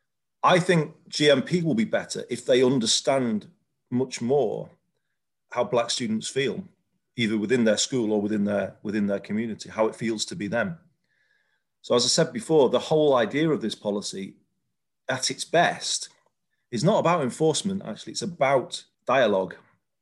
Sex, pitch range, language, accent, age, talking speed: male, 110-170 Hz, English, British, 40-59, 155 wpm